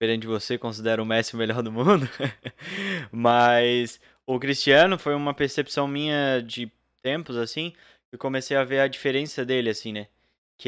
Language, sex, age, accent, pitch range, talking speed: Portuguese, male, 20-39, Brazilian, 125-155 Hz, 170 wpm